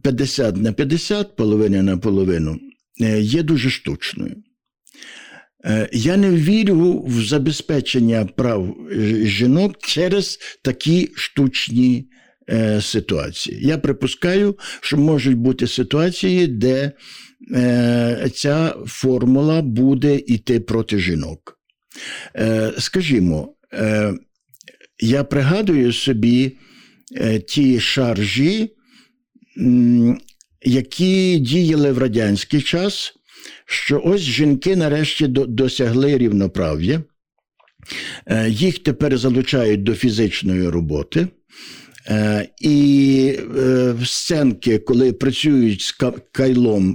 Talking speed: 80 wpm